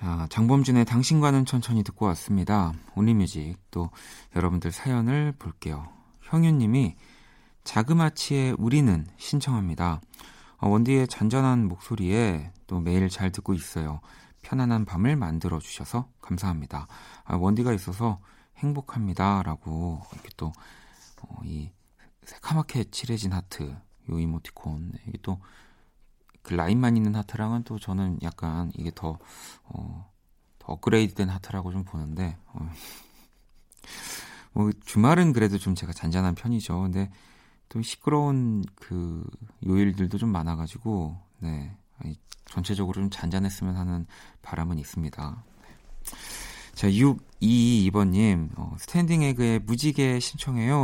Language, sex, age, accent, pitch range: Korean, male, 40-59, native, 85-120 Hz